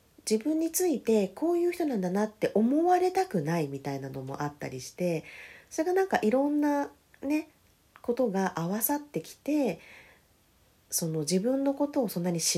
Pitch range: 155-250 Hz